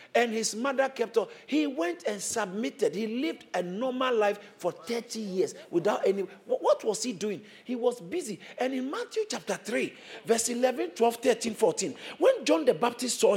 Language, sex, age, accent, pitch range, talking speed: English, male, 50-69, Nigerian, 225-335 Hz, 185 wpm